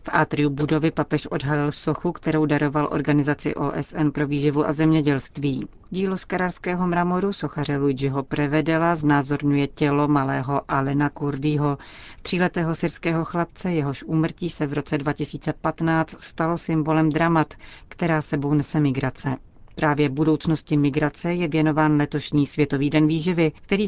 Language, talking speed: Czech, 130 wpm